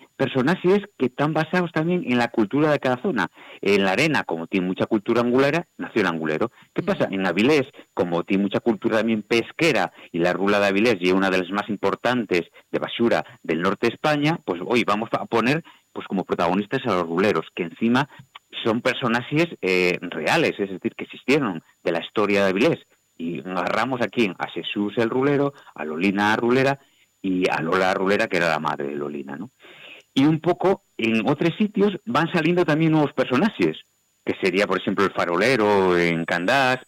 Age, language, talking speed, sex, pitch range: 50-69, Spanish, 190 wpm, male, 95-140 Hz